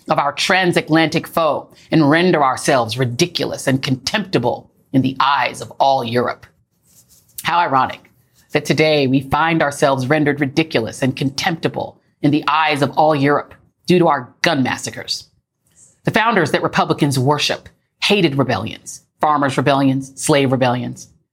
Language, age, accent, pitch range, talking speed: English, 40-59, American, 140-200 Hz, 140 wpm